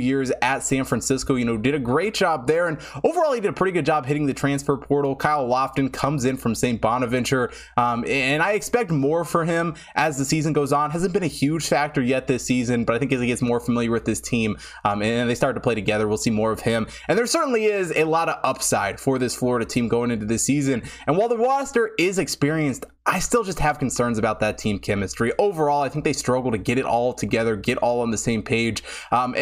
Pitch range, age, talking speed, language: 120-150 Hz, 20-39, 245 wpm, English